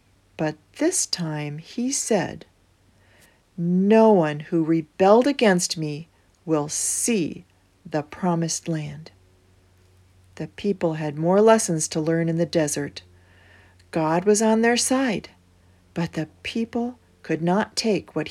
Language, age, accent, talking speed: English, 40-59, American, 125 wpm